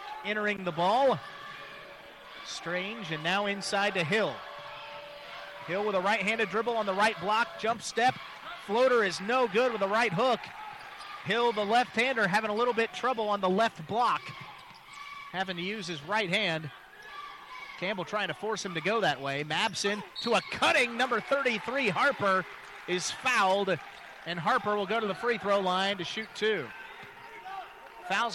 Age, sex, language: 30-49, male, English